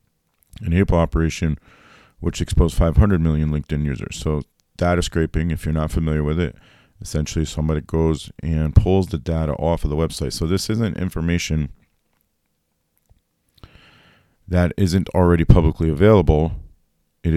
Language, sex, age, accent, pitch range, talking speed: English, male, 30-49, American, 80-90 Hz, 135 wpm